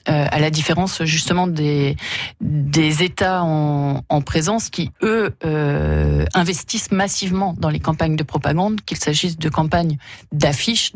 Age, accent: 30-49, French